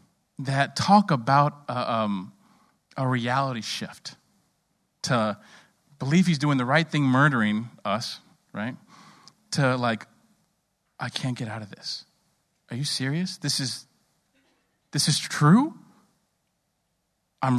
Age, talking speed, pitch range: 40-59, 115 wpm, 130-185 Hz